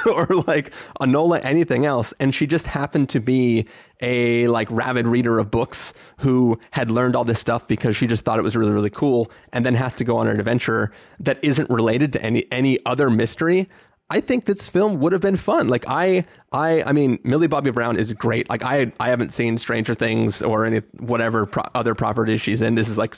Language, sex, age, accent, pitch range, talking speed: English, male, 20-39, American, 115-140 Hz, 215 wpm